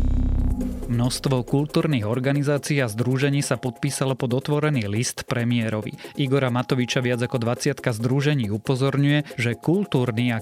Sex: male